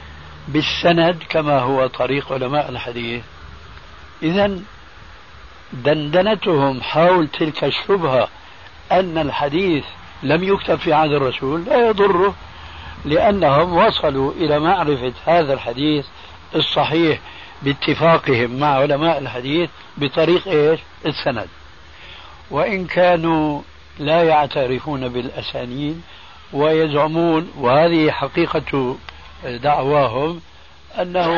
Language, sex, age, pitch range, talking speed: Arabic, male, 60-79, 130-170 Hz, 80 wpm